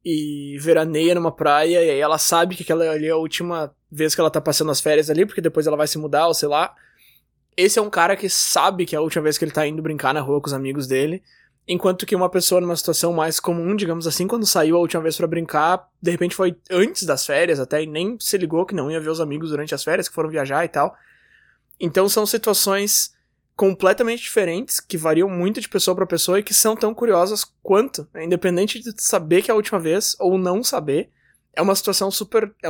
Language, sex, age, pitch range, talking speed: Portuguese, male, 20-39, 155-195 Hz, 240 wpm